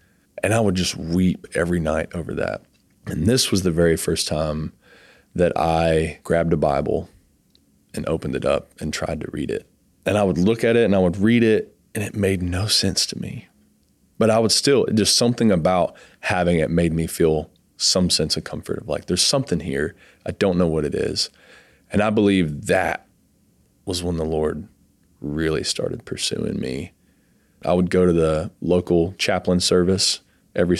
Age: 20-39